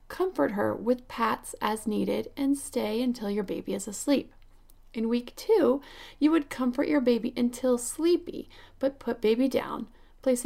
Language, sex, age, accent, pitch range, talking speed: English, female, 30-49, American, 225-275 Hz, 160 wpm